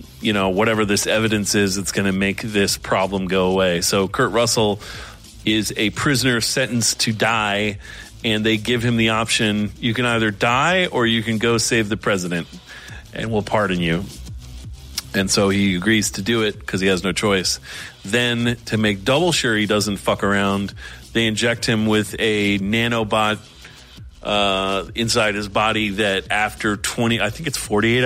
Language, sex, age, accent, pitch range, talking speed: English, male, 40-59, American, 100-115 Hz, 175 wpm